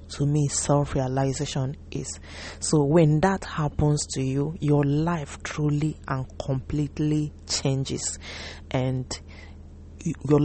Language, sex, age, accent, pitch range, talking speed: English, female, 30-49, Nigerian, 130-150 Hz, 105 wpm